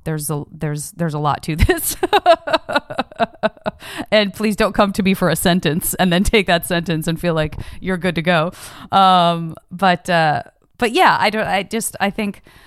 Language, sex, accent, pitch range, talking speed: English, female, American, 145-170 Hz, 190 wpm